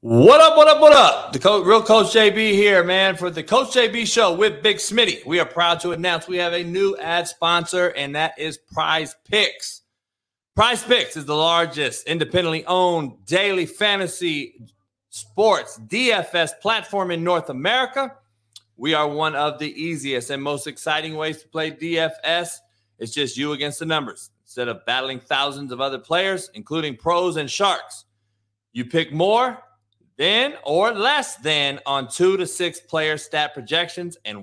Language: English